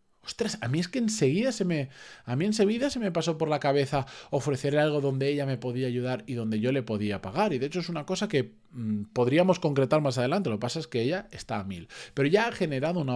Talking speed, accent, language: 250 wpm, Spanish, Spanish